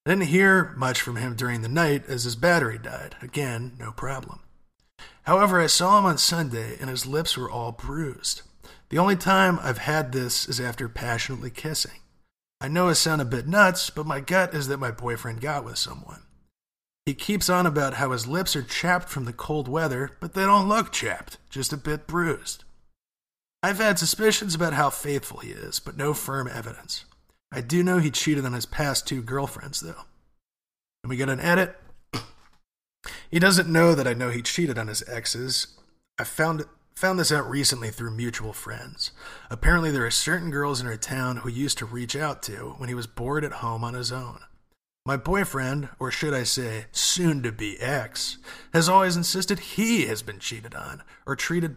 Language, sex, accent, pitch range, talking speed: English, male, American, 125-170 Hz, 195 wpm